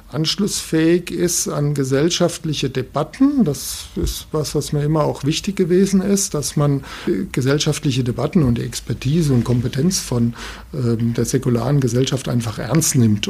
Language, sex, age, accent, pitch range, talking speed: German, male, 60-79, German, 120-165 Hz, 145 wpm